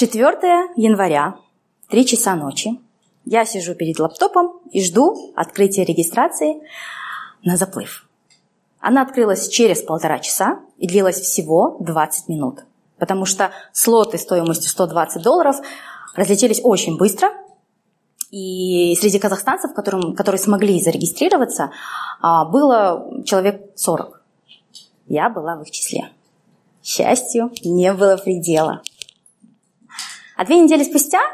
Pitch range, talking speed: 180-240 Hz, 110 wpm